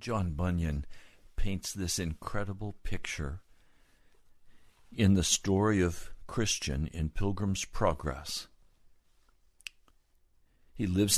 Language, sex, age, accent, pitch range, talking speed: English, male, 60-79, American, 90-130 Hz, 85 wpm